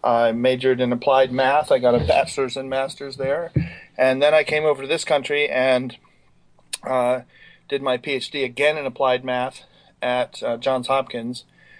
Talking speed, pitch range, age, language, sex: 170 wpm, 125-145 Hz, 40-59, English, male